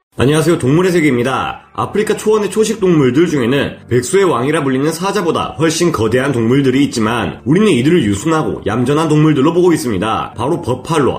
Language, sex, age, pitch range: Korean, male, 30-49, 145-200 Hz